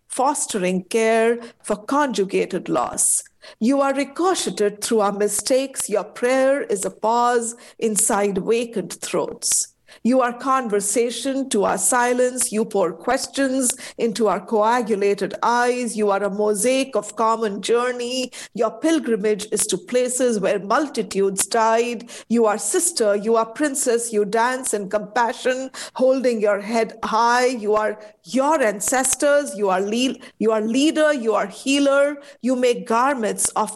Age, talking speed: 50-69, 140 wpm